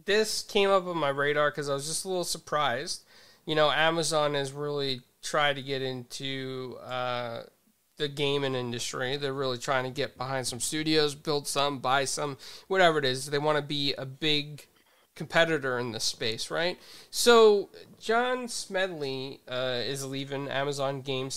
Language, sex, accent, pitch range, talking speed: English, male, American, 135-165 Hz, 170 wpm